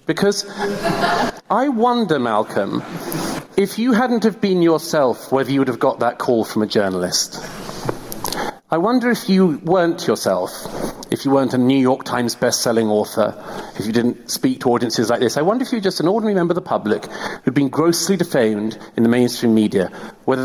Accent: British